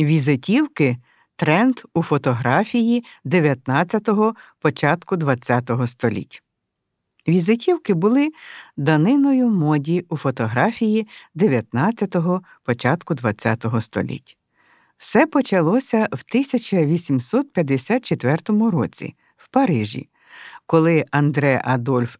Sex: female